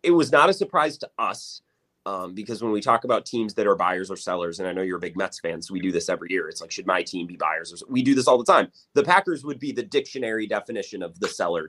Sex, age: male, 30-49